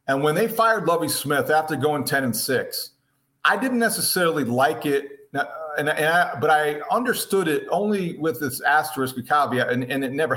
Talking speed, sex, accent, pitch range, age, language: 195 wpm, male, American, 130-165 Hz, 40-59, English